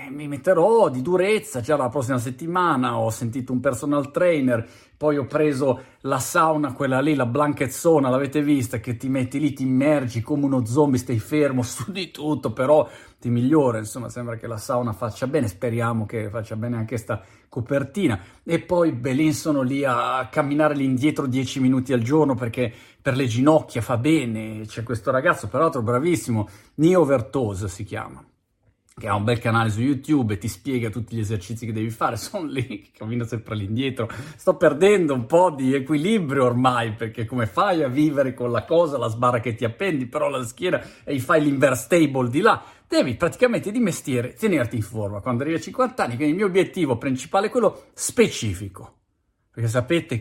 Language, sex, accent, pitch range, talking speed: Italian, male, native, 115-150 Hz, 190 wpm